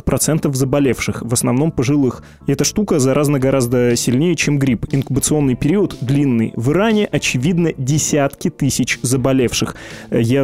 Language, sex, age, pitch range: Russian, male, 20-39, 125-150 Hz